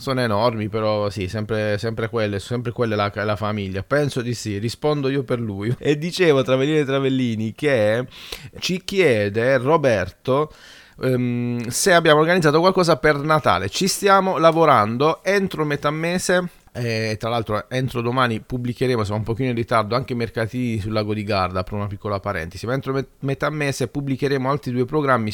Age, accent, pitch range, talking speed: 30-49, native, 110-135 Hz, 170 wpm